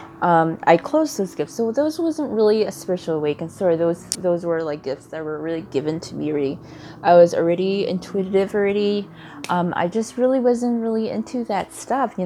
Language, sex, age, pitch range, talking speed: English, female, 20-39, 160-210 Hz, 195 wpm